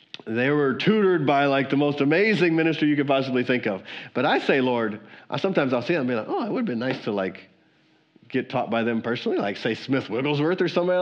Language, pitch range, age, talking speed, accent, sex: English, 105-145 Hz, 40-59, 245 wpm, American, male